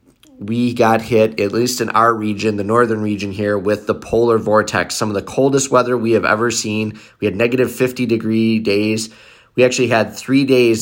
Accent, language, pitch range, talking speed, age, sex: American, English, 105-120 Hz, 200 wpm, 30-49, male